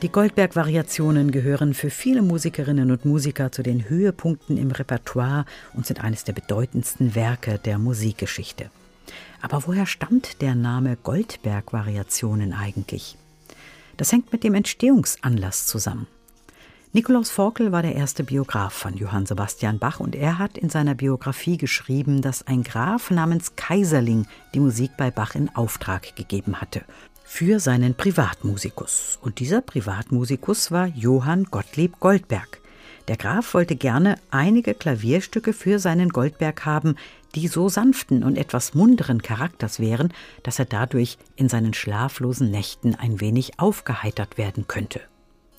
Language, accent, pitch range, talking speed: German, German, 115-165 Hz, 135 wpm